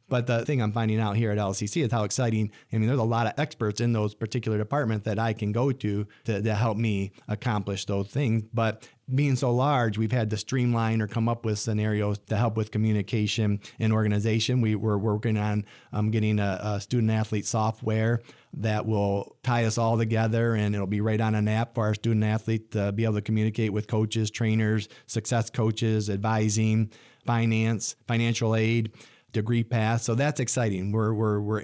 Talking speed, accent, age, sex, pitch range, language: 195 wpm, American, 40-59, male, 105-120 Hz, English